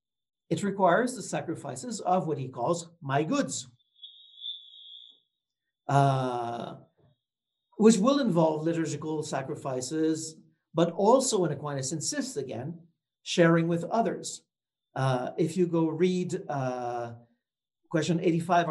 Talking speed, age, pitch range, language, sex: 105 wpm, 50-69, 150-210 Hz, English, male